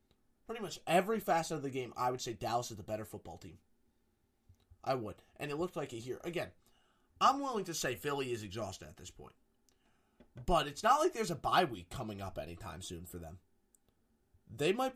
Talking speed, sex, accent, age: 205 wpm, male, American, 20-39